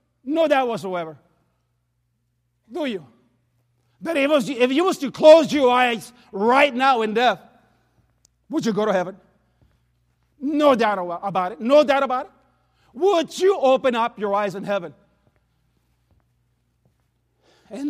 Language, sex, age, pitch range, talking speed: English, male, 40-59, 165-265 Hz, 135 wpm